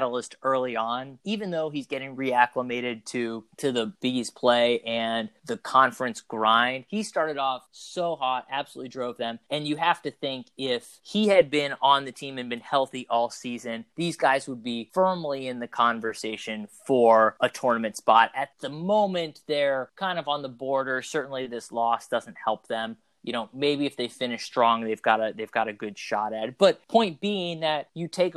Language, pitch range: English, 120-155 Hz